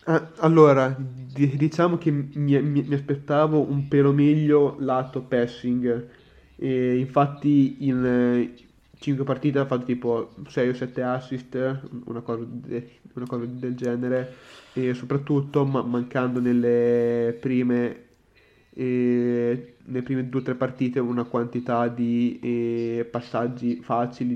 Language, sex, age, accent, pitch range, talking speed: Italian, male, 20-39, native, 120-135 Hz, 120 wpm